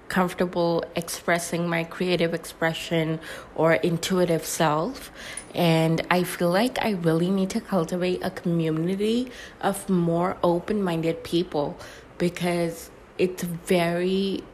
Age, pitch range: 20-39, 165-190 Hz